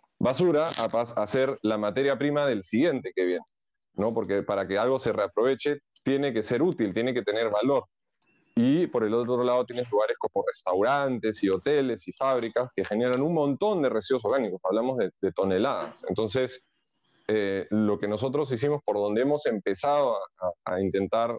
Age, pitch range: 30-49, 105-135 Hz